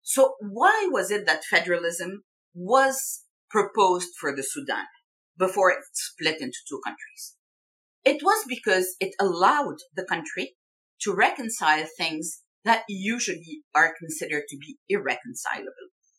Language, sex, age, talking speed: English, female, 50-69, 125 wpm